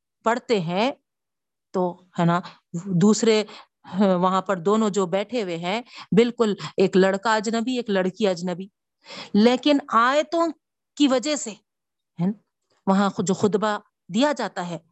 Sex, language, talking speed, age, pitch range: female, Urdu, 125 wpm, 50-69, 200-250 Hz